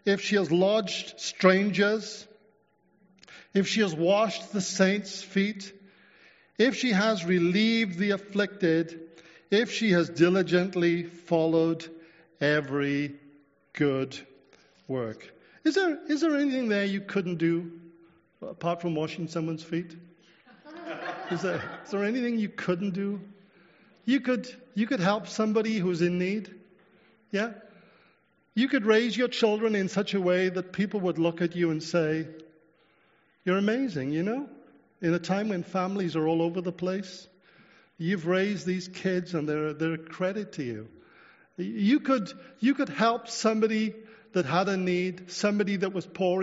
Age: 50-69